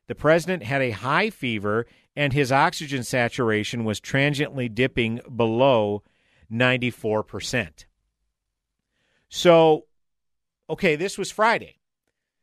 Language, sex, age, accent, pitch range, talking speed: English, male, 50-69, American, 125-170 Hz, 95 wpm